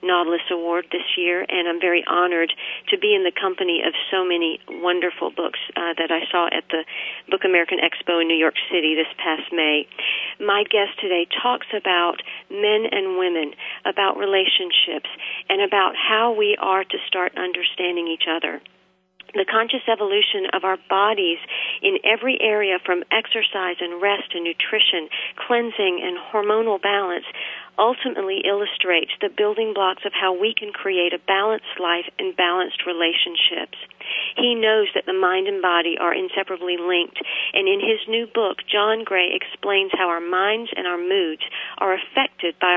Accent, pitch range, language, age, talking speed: American, 180-220 Hz, English, 40-59, 165 wpm